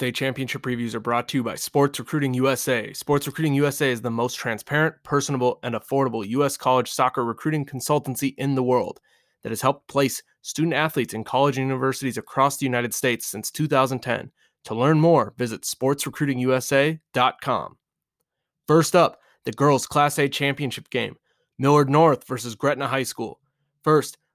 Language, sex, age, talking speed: English, male, 20-39, 155 wpm